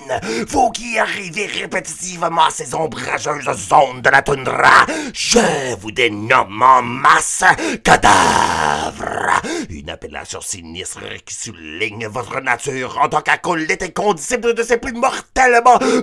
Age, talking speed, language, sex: 50-69, 125 wpm, English, male